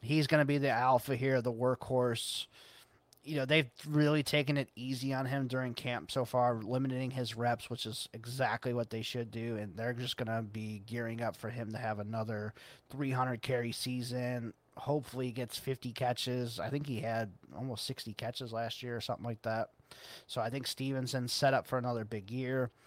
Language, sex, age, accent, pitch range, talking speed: English, male, 30-49, American, 115-140 Hz, 200 wpm